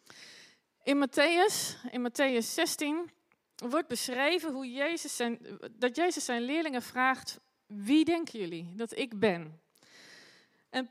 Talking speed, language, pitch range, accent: 105 wpm, Dutch, 205-265 Hz, Dutch